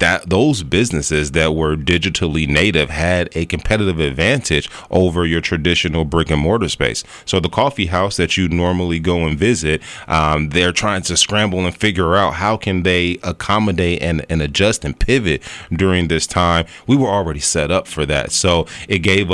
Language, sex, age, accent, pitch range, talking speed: English, male, 30-49, American, 75-90 Hz, 180 wpm